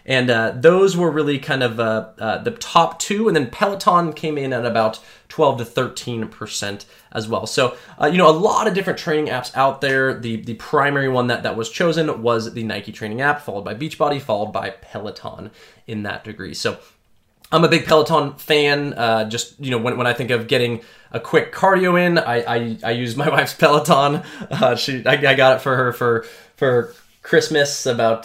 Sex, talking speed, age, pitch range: male, 210 wpm, 20-39, 115-145 Hz